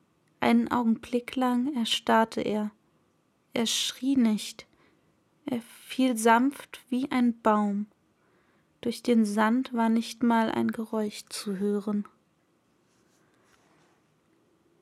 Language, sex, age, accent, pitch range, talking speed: German, female, 20-39, German, 205-235 Hz, 95 wpm